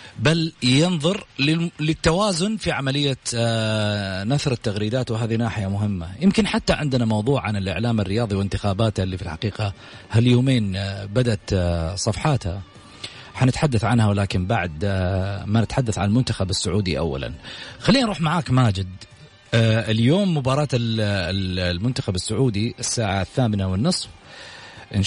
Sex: male